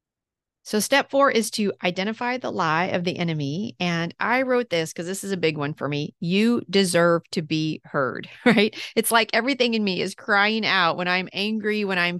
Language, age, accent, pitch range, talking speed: English, 40-59, American, 170-220 Hz, 205 wpm